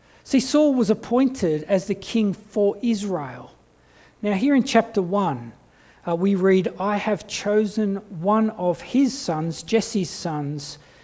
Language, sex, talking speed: English, male, 135 wpm